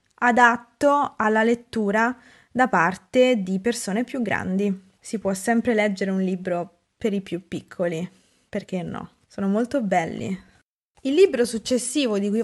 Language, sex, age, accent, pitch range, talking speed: Italian, female, 20-39, native, 195-245 Hz, 140 wpm